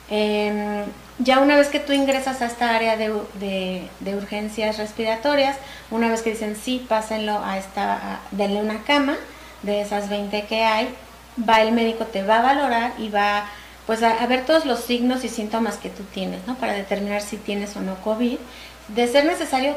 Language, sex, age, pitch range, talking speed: Spanish, female, 30-49, 205-250 Hz, 195 wpm